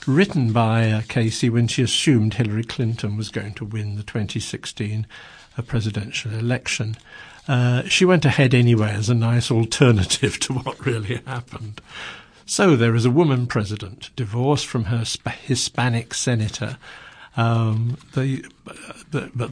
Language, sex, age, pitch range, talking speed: English, male, 50-69, 110-130 Hz, 130 wpm